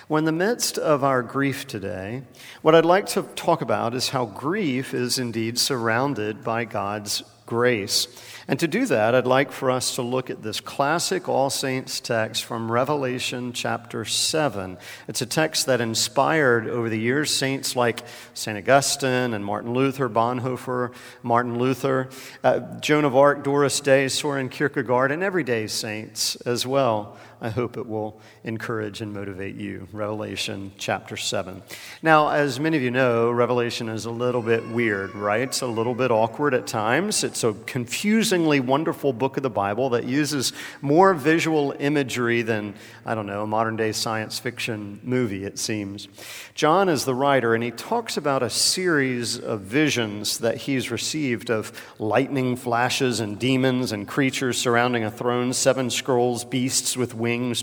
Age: 50-69